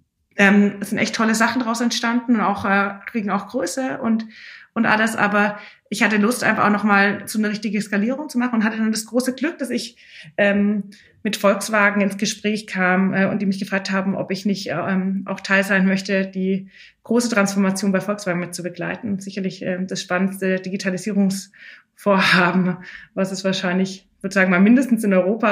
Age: 20-39